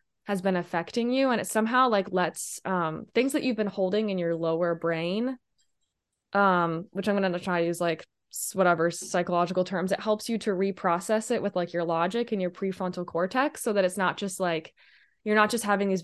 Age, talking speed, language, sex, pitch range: 20-39, 210 wpm, English, female, 175-205 Hz